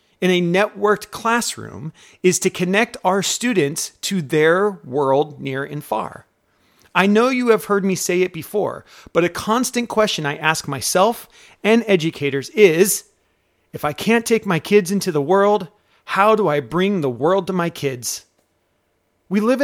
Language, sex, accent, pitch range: English, male, American, 145-205 Hz